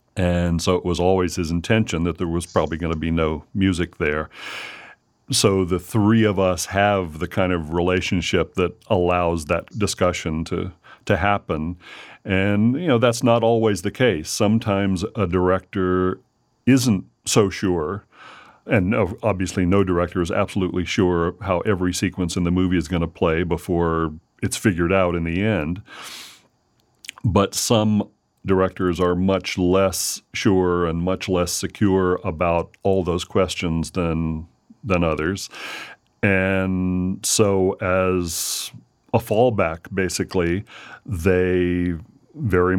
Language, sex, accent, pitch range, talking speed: English, male, American, 90-100 Hz, 135 wpm